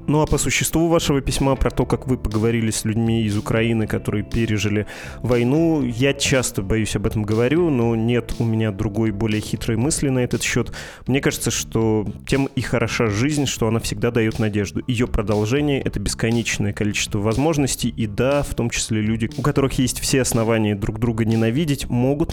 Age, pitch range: 20-39, 110-130 Hz